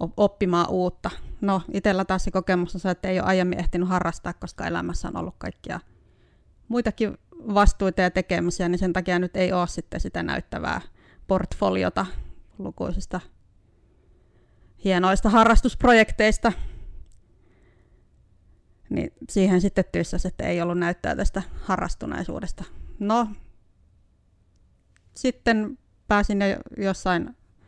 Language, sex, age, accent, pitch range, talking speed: Finnish, female, 30-49, native, 170-200 Hz, 110 wpm